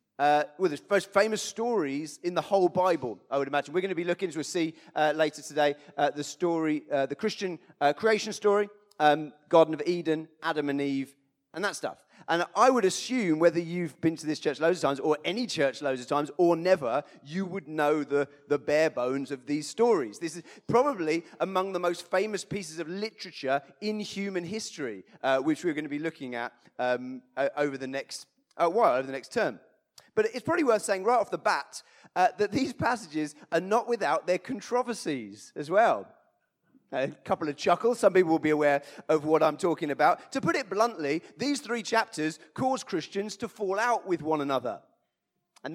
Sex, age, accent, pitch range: male, 30-49, British, 150-210 Hz